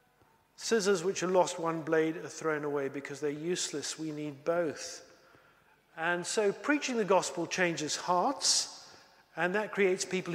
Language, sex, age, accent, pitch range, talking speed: English, male, 50-69, British, 165-200 Hz, 150 wpm